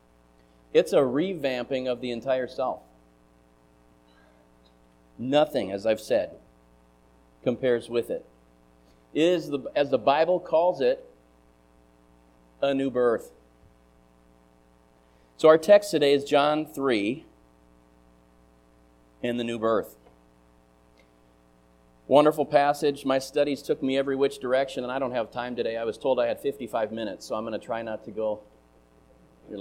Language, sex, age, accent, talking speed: English, male, 40-59, American, 135 wpm